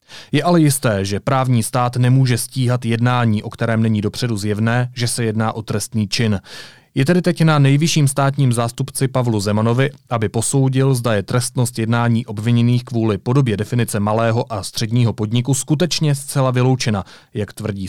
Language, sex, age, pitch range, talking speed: Czech, male, 30-49, 110-140 Hz, 160 wpm